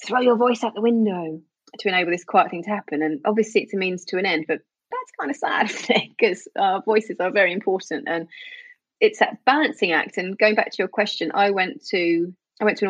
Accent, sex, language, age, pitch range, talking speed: British, female, English, 30-49, 175-230 Hz, 235 wpm